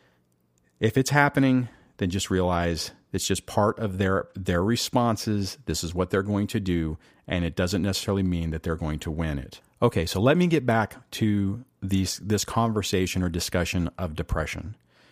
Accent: American